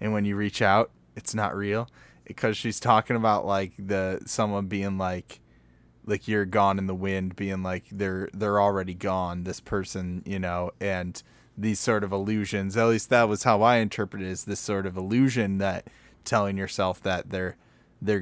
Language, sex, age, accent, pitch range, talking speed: English, male, 20-39, American, 95-115 Hz, 190 wpm